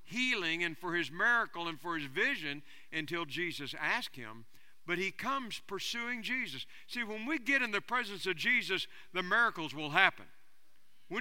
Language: English